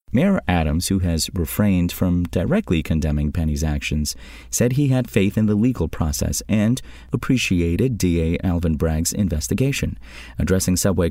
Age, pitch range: 30-49, 85-110 Hz